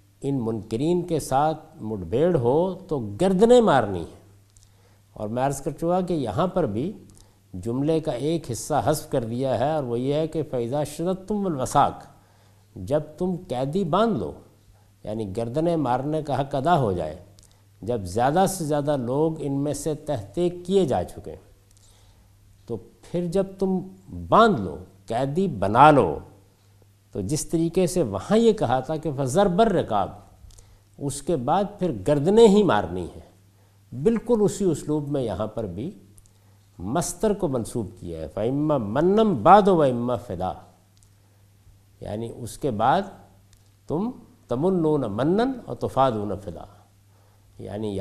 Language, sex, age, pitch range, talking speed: Urdu, male, 50-69, 100-160 Hz, 145 wpm